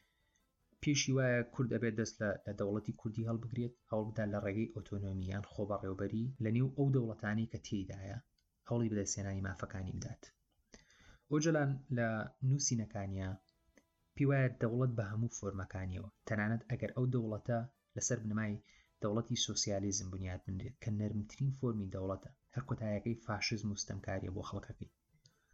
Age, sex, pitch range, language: 30-49, male, 105-120 Hz, English